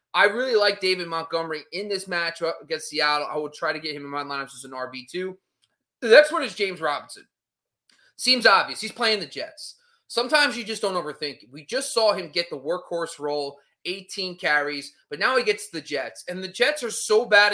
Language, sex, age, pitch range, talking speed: English, male, 20-39, 155-220 Hz, 210 wpm